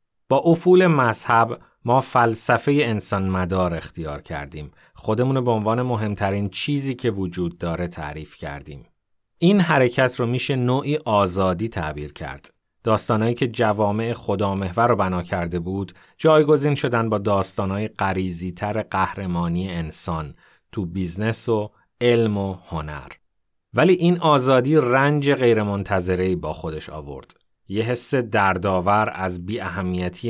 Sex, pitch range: male, 90-125 Hz